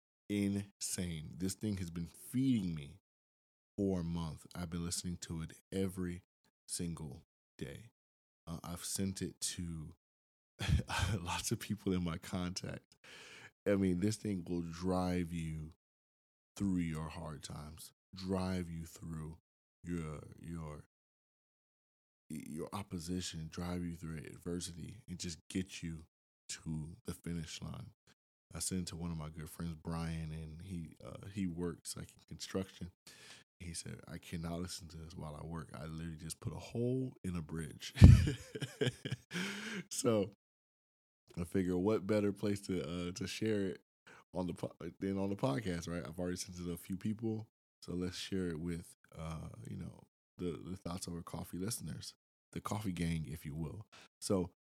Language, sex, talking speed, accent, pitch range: English, male, 160 wpm, American, 80-95 Hz